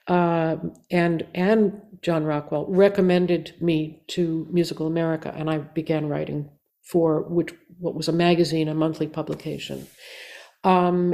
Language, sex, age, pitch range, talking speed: German, female, 60-79, 160-190 Hz, 130 wpm